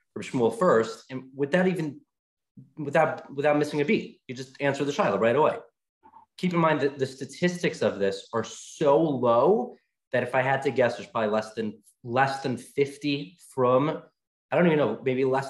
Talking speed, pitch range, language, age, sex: 185 wpm, 110-150 Hz, English, 30-49, male